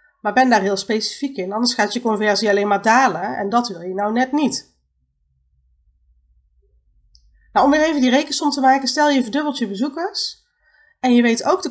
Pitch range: 210-280 Hz